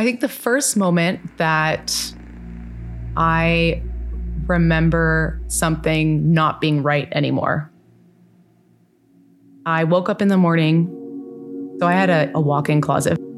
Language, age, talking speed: English, 20-39, 115 wpm